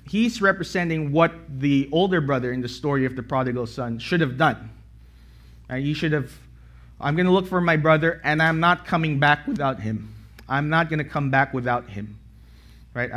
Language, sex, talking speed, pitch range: English, male, 195 wpm, 120-160 Hz